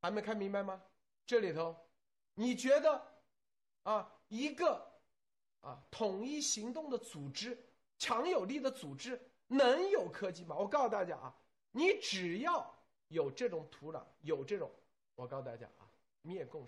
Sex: male